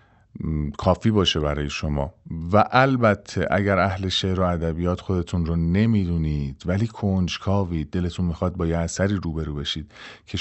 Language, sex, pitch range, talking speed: Persian, male, 85-110 Hz, 140 wpm